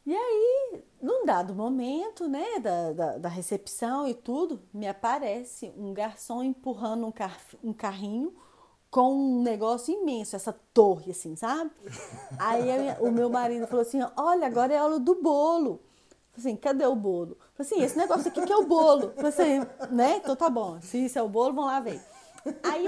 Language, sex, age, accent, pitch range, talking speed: Portuguese, female, 30-49, Brazilian, 205-295 Hz, 195 wpm